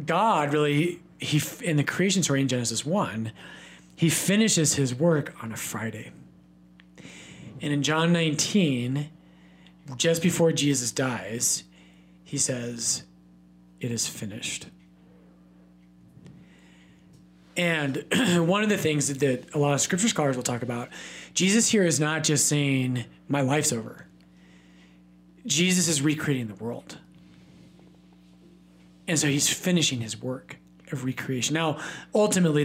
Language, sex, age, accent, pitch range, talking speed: English, male, 40-59, American, 110-155 Hz, 125 wpm